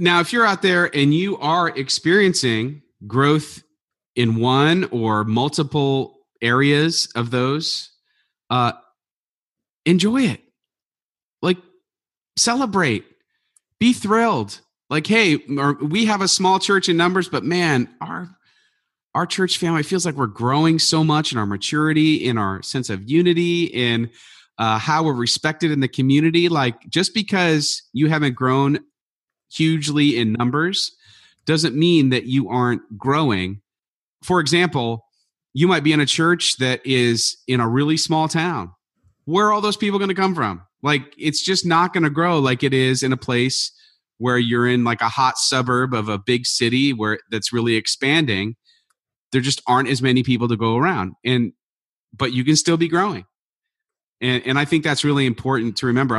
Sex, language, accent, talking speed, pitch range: male, English, American, 165 wpm, 125-170 Hz